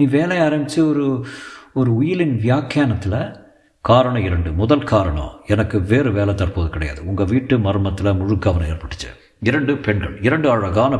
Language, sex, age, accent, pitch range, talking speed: Tamil, male, 50-69, native, 95-130 Hz, 140 wpm